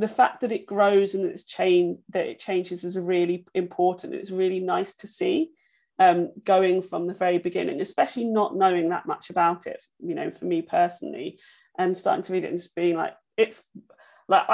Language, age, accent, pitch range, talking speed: English, 30-49, British, 175-225 Hz, 200 wpm